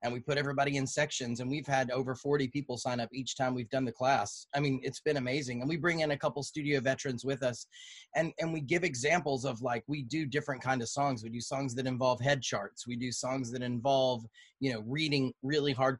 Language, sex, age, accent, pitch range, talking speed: English, male, 30-49, American, 125-155 Hz, 245 wpm